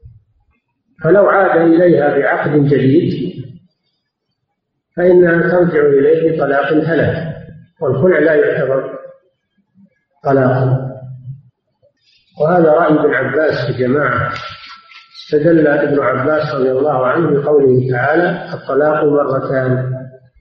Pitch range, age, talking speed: 130-155 Hz, 50-69, 90 wpm